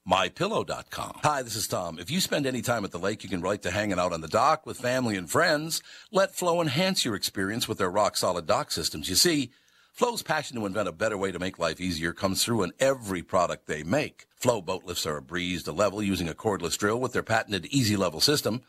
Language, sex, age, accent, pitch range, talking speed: English, male, 60-79, American, 95-130 Hz, 240 wpm